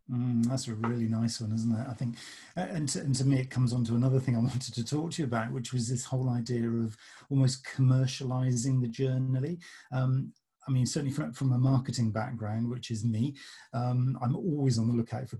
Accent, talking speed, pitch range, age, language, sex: British, 220 wpm, 115-130 Hz, 40-59, English, male